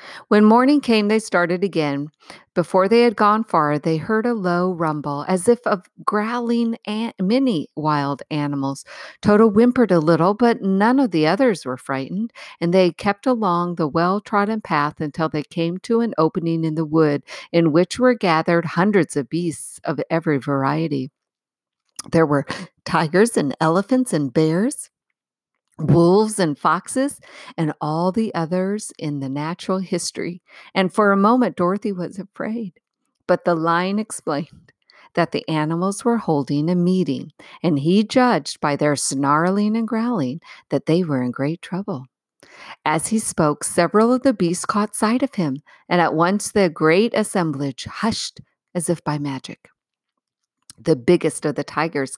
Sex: female